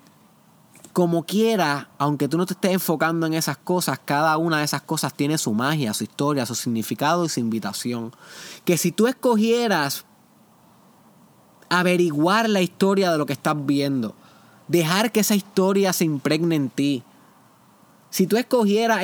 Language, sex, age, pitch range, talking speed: Spanish, male, 20-39, 155-200 Hz, 155 wpm